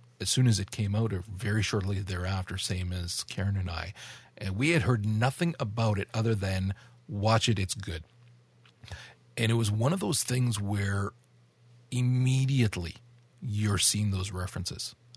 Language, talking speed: English, 160 wpm